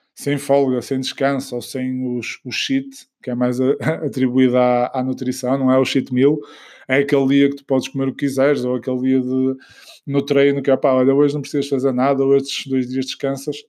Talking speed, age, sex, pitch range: 230 wpm, 20-39, male, 130-145 Hz